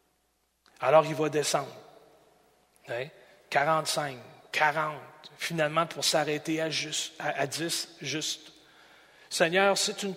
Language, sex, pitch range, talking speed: French, male, 140-185 Hz, 110 wpm